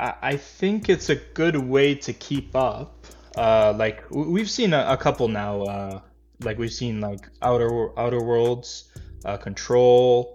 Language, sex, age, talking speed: English, male, 20-39, 155 wpm